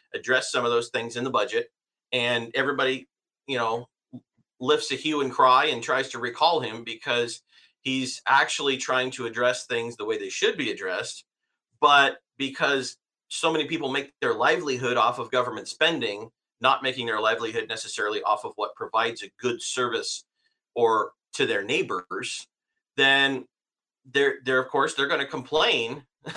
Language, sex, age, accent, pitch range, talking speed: English, male, 40-59, American, 125-160 Hz, 165 wpm